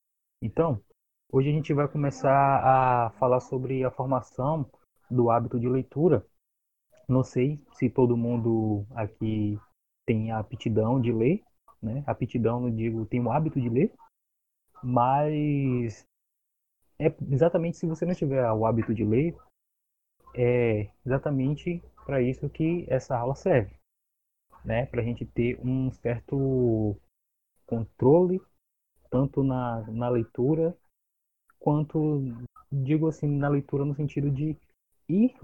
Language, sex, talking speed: Portuguese, male, 130 wpm